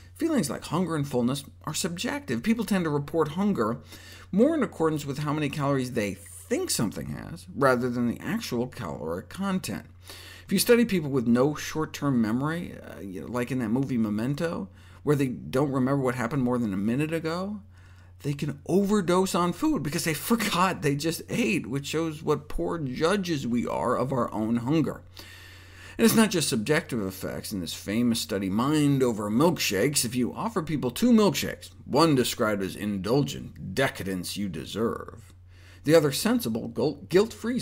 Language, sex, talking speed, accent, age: English, male, 170 wpm, American, 50-69